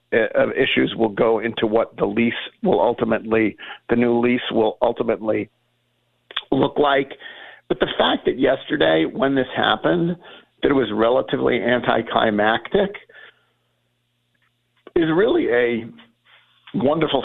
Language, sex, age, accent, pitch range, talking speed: English, male, 50-69, American, 110-135 Hz, 120 wpm